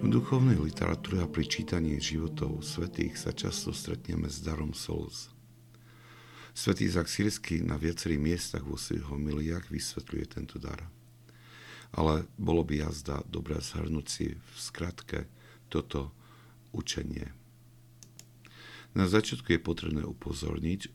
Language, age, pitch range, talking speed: Slovak, 50-69, 70-110 Hz, 115 wpm